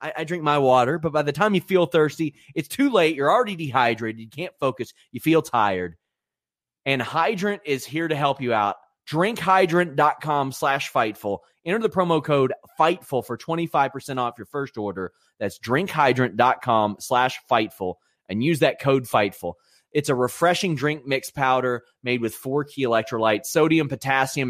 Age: 30-49